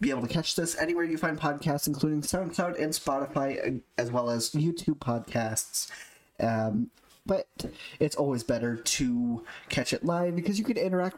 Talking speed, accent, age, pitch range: 165 wpm, American, 30-49, 120-155 Hz